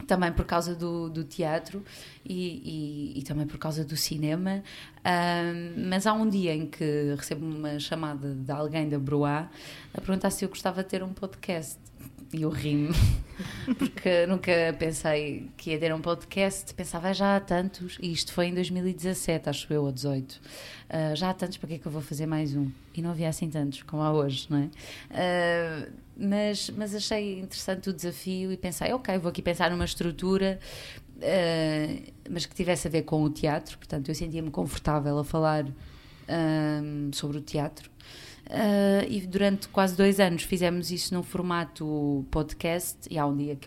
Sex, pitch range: female, 150-180 Hz